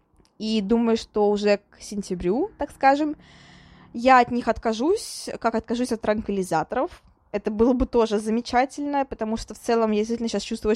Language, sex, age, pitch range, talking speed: Russian, female, 20-39, 210-250 Hz, 160 wpm